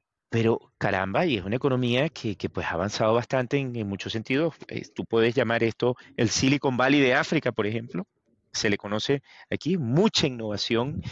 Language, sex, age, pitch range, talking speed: Spanish, male, 30-49, 115-160 Hz, 185 wpm